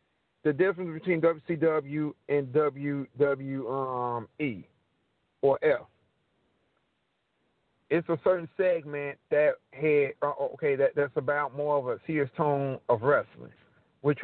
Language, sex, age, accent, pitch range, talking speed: English, male, 40-59, American, 130-150 Hz, 110 wpm